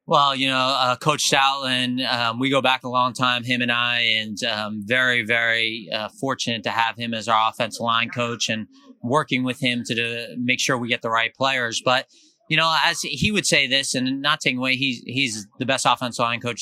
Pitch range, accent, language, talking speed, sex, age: 115-135 Hz, American, English, 230 wpm, male, 30-49